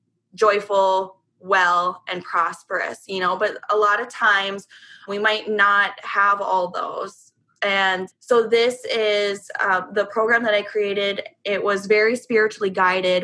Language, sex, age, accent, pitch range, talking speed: English, female, 20-39, American, 190-215 Hz, 145 wpm